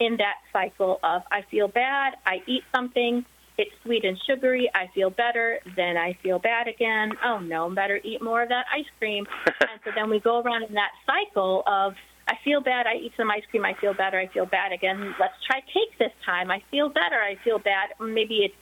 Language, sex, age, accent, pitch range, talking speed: English, female, 30-49, American, 195-245 Hz, 225 wpm